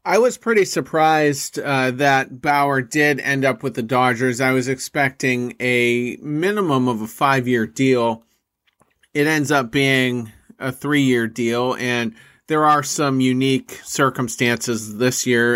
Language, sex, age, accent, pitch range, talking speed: English, male, 30-49, American, 120-140 Hz, 150 wpm